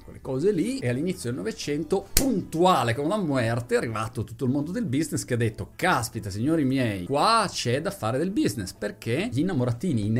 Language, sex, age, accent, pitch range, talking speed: Italian, male, 30-49, native, 110-160 Hz, 200 wpm